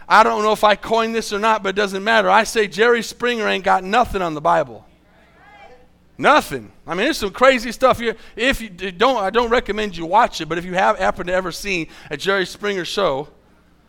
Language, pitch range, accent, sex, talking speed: English, 140-210 Hz, American, male, 225 wpm